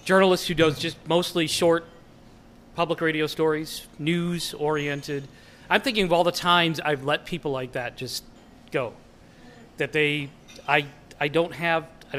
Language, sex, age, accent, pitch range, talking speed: English, male, 40-59, American, 135-165 Hz, 155 wpm